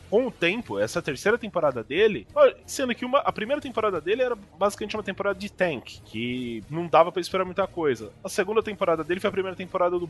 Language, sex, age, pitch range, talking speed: Portuguese, male, 20-39, 145-205 Hz, 210 wpm